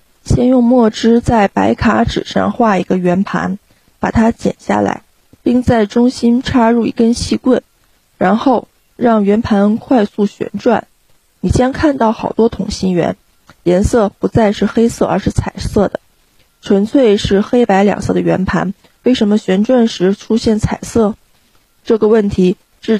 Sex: female